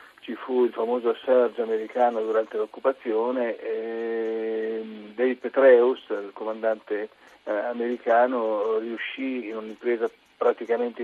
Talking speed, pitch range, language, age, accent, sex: 100 wpm, 110-130 Hz, Italian, 50-69, native, male